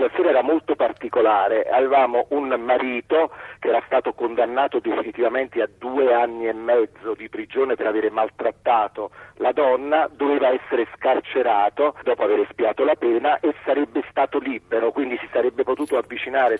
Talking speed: 145 wpm